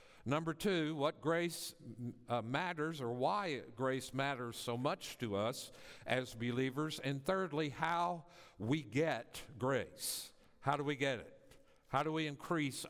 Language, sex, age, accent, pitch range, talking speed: English, male, 50-69, American, 120-175 Hz, 145 wpm